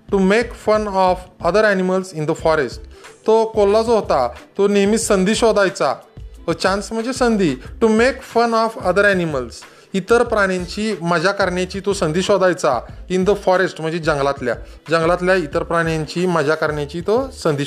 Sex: male